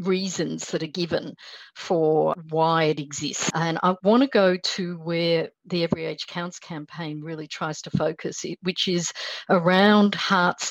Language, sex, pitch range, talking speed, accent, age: English, female, 160-190 Hz, 160 wpm, Australian, 50-69